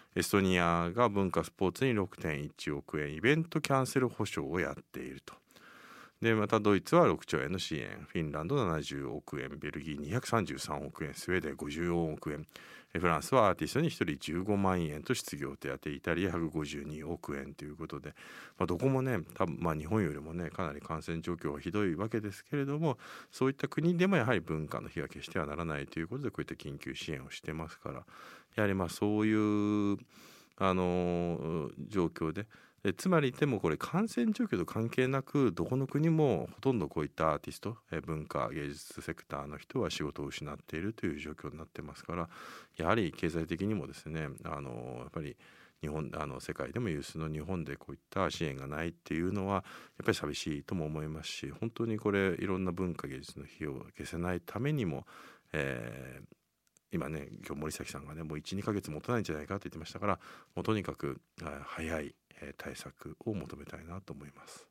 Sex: male